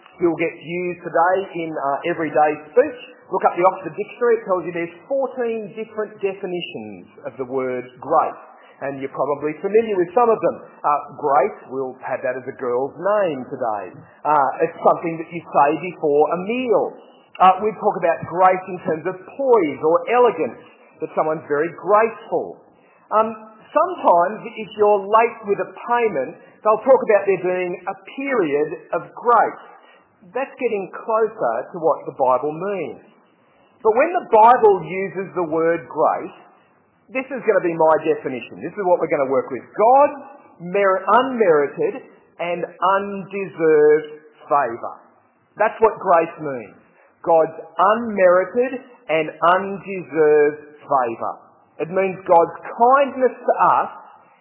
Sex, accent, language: male, Australian, English